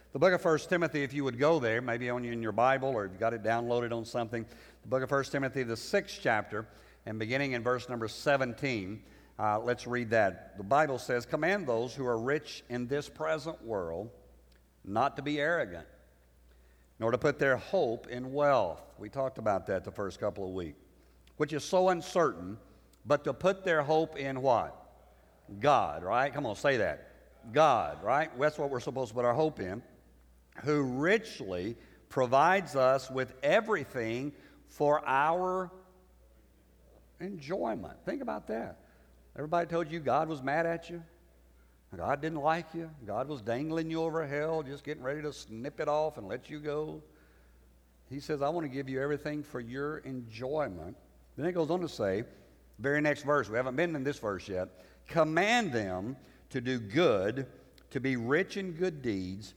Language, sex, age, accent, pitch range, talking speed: English, male, 50-69, American, 105-150 Hz, 180 wpm